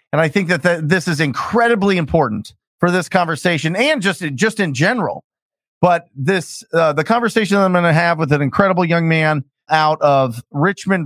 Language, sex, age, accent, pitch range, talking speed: English, male, 30-49, American, 140-185 Hz, 190 wpm